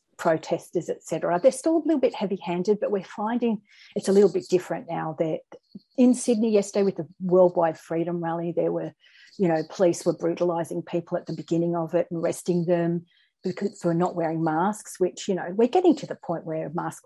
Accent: Australian